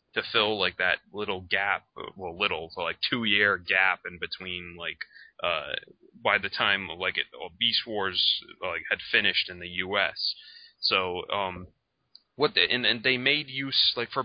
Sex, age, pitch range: male, 20-39, 90-115 Hz